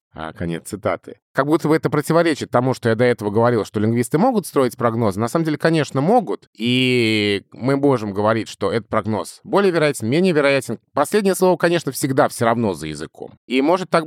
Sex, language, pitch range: male, Russian, 115-155 Hz